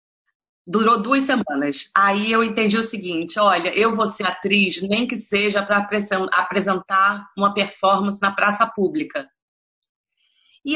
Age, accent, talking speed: 30-49, Brazilian, 135 wpm